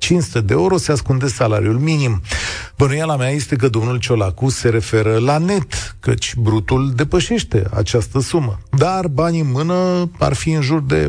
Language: Romanian